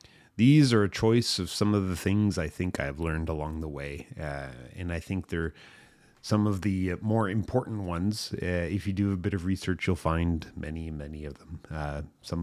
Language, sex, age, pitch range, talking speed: English, male, 30-49, 85-105 Hz, 210 wpm